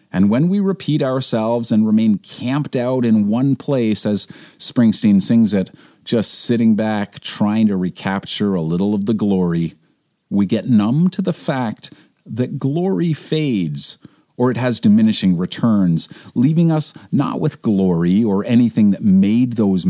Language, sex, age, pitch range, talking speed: English, male, 40-59, 95-155 Hz, 155 wpm